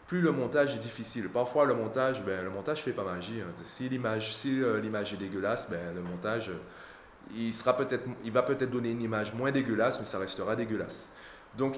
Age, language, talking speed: 20-39, French, 200 wpm